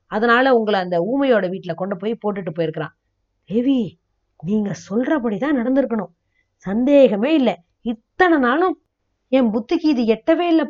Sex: female